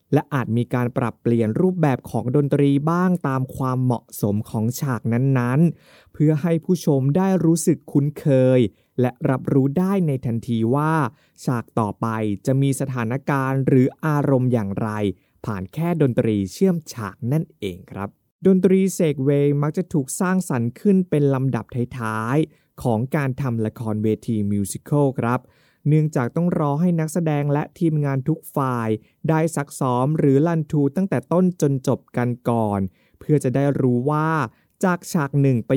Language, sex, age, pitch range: Thai, male, 20-39, 120-155 Hz